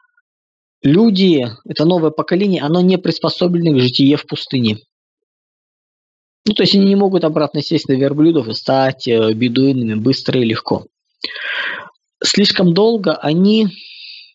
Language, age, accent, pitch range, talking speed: Russian, 20-39, native, 140-190 Hz, 125 wpm